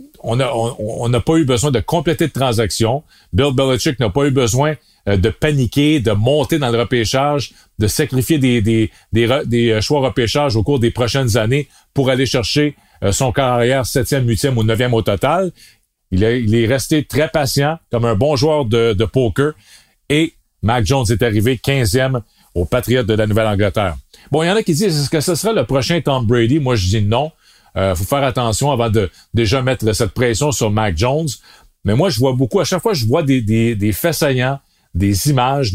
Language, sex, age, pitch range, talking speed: French, male, 40-59, 115-145 Hz, 210 wpm